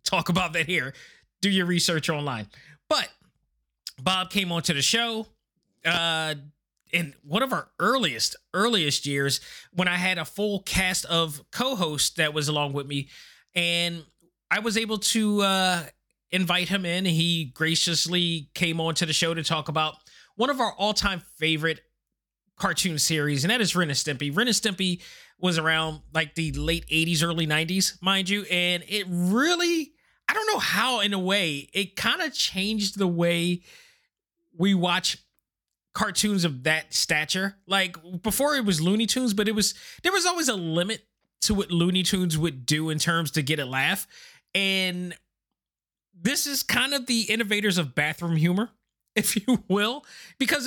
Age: 20-39